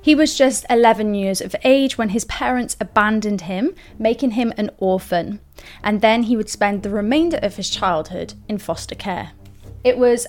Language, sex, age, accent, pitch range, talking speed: English, female, 30-49, British, 205-260 Hz, 180 wpm